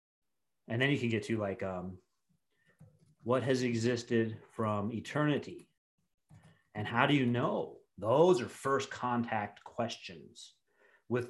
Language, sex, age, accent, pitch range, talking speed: English, male, 30-49, American, 110-135 Hz, 125 wpm